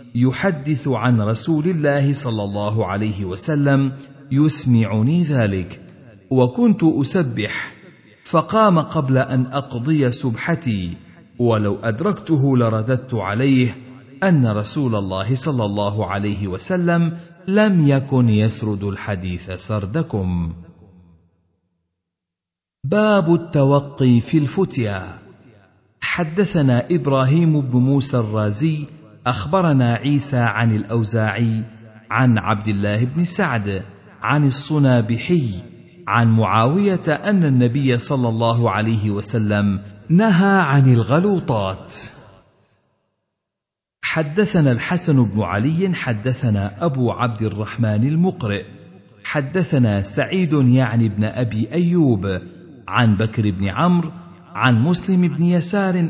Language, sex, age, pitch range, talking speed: Arabic, male, 50-69, 105-150 Hz, 95 wpm